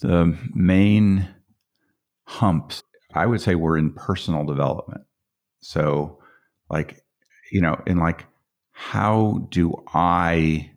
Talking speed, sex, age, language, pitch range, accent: 105 wpm, male, 50-69, English, 75-95 Hz, American